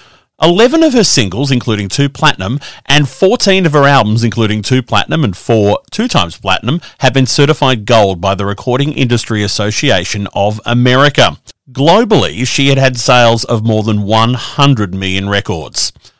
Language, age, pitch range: English, 40-59, 105-150 Hz